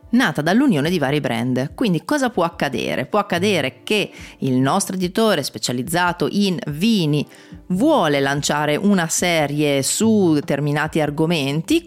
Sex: female